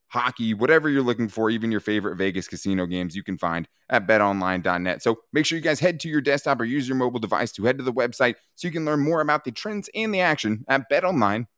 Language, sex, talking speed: English, male, 250 wpm